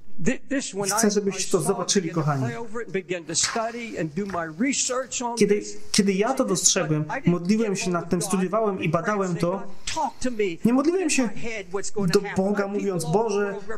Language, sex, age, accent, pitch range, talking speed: Polish, male, 30-49, native, 190-245 Hz, 115 wpm